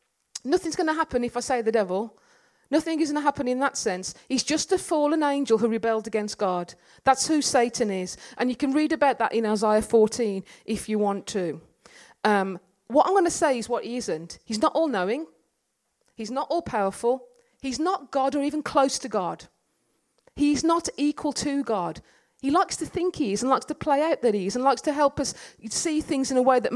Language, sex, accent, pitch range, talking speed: English, female, British, 205-275 Hz, 215 wpm